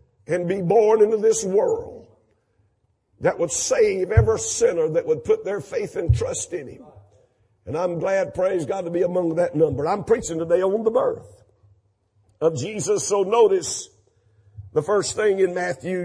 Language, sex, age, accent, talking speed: English, male, 50-69, American, 170 wpm